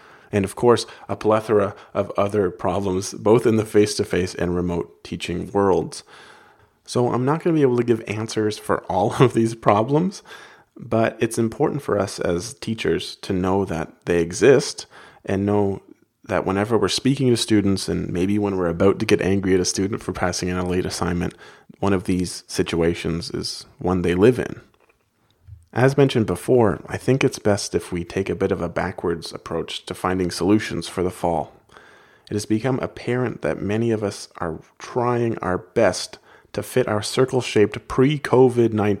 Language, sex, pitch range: English, male, 90-115 Hz